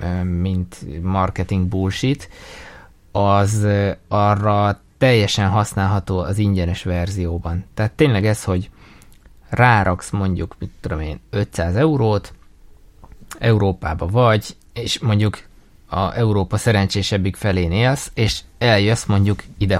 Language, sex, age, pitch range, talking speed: Hungarian, male, 20-39, 95-110 Hz, 100 wpm